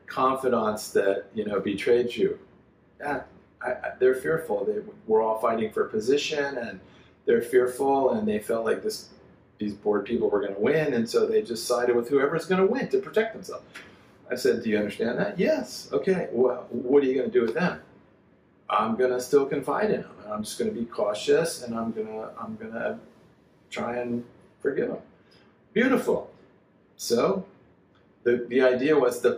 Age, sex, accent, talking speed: 40-59, male, American, 195 wpm